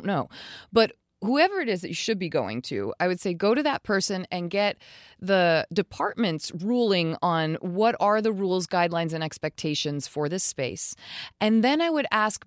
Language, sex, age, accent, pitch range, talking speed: English, female, 20-39, American, 165-205 Hz, 190 wpm